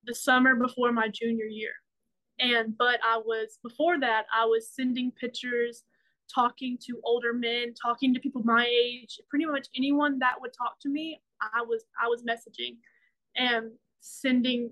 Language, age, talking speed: English, 20-39, 165 wpm